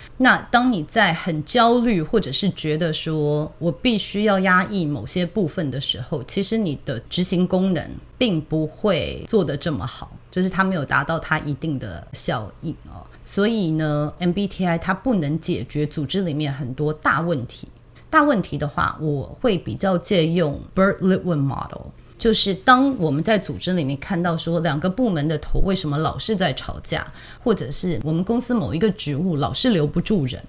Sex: female